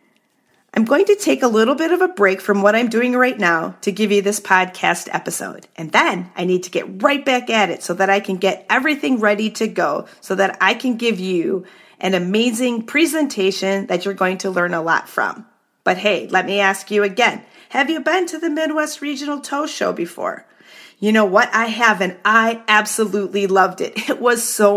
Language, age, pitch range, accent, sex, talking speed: English, 40-59, 185-235 Hz, American, female, 215 wpm